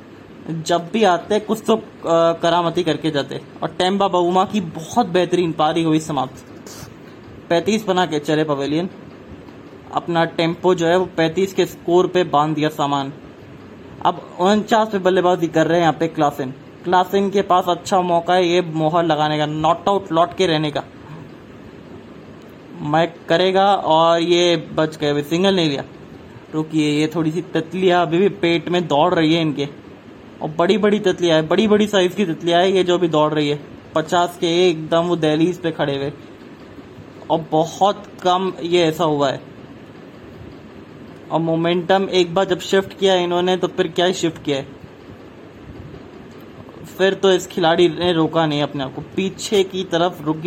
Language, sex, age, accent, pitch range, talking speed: English, male, 20-39, Indian, 155-185 Hz, 140 wpm